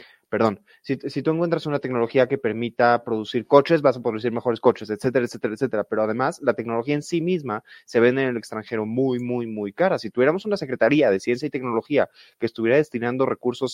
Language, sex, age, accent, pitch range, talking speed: Spanish, male, 20-39, Mexican, 120-165 Hz, 205 wpm